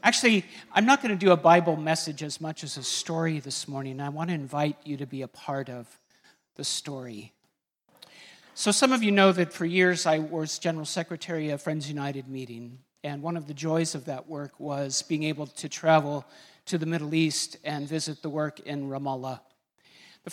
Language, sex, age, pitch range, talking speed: English, male, 50-69, 140-170 Hz, 200 wpm